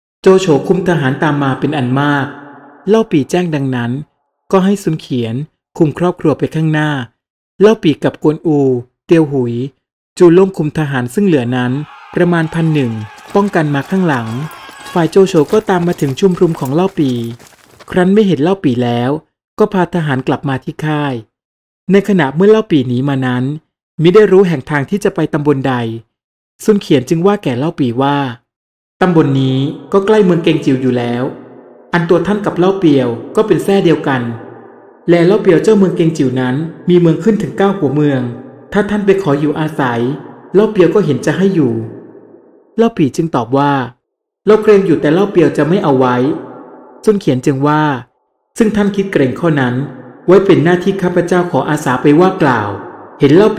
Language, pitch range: Thai, 135-185 Hz